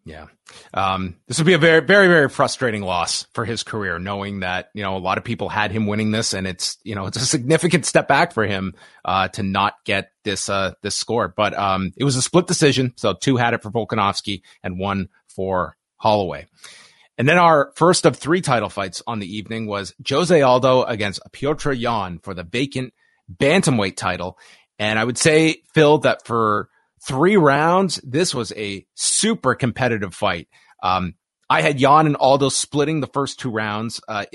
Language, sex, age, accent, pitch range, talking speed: English, male, 30-49, American, 100-135 Hz, 195 wpm